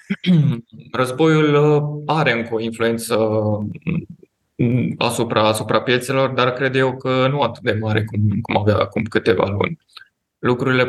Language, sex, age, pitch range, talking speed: Romanian, male, 20-39, 110-130 Hz, 125 wpm